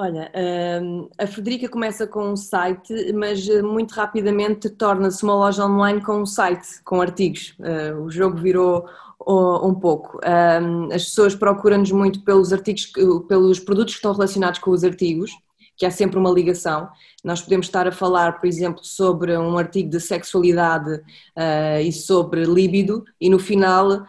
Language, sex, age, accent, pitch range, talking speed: Portuguese, female, 20-39, Brazilian, 175-205 Hz, 150 wpm